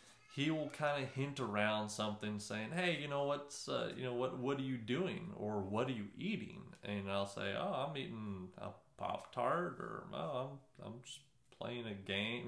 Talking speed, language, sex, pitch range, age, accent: 200 wpm, English, male, 110-140 Hz, 30-49, American